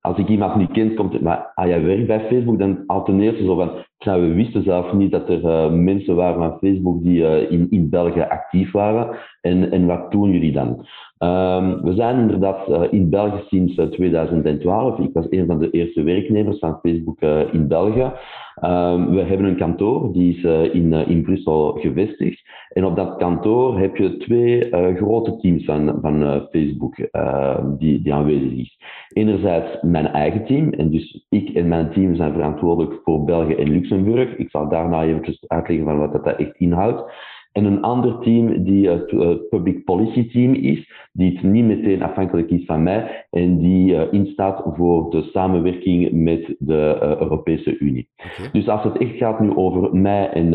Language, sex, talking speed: Dutch, male, 195 wpm